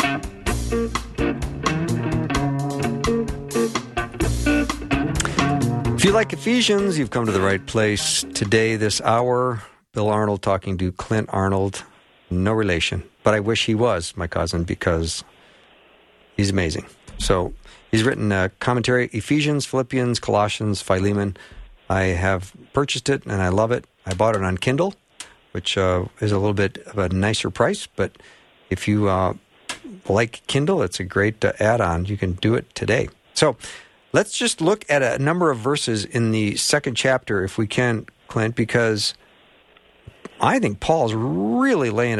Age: 50-69